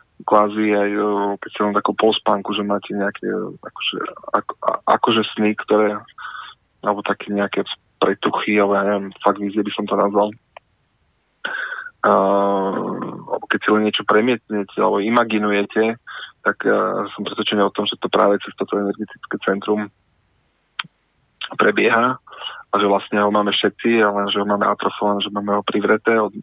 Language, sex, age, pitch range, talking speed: Slovak, male, 20-39, 100-105 Hz, 150 wpm